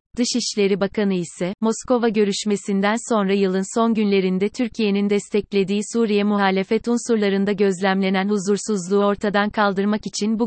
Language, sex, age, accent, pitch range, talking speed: Turkish, female, 30-49, native, 195-225 Hz, 115 wpm